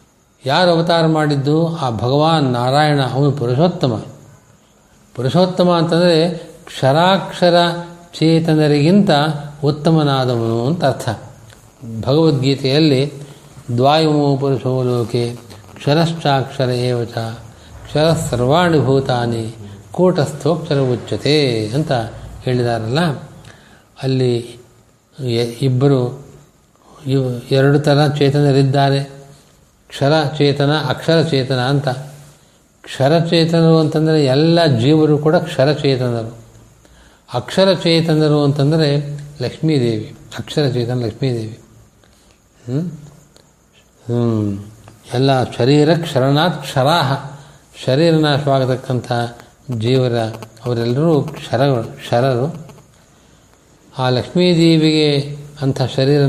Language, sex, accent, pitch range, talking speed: Kannada, male, native, 120-155 Hz, 65 wpm